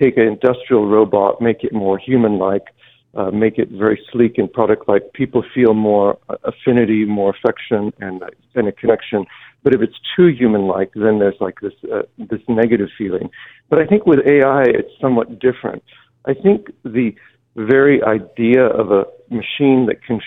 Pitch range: 110-130 Hz